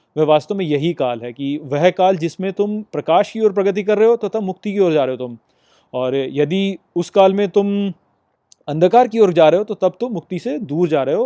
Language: Hindi